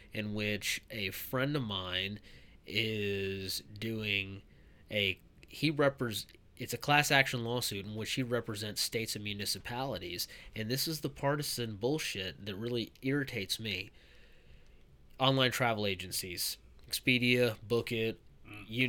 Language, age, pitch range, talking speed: English, 20-39, 100-120 Hz, 125 wpm